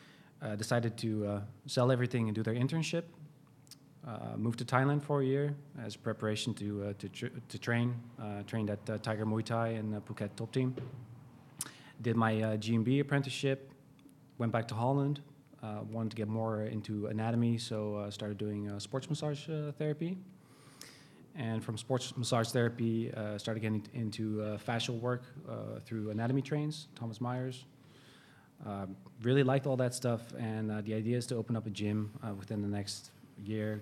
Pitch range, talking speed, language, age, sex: 105-135 Hz, 180 wpm, English, 20-39, male